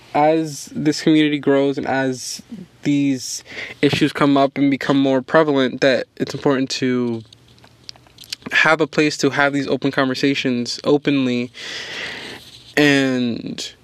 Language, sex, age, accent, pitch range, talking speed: English, male, 20-39, American, 130-150 Hz, 120 wpm